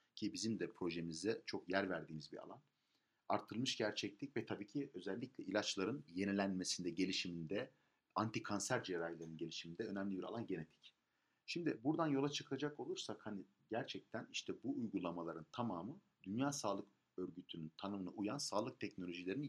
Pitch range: 90-130 Hz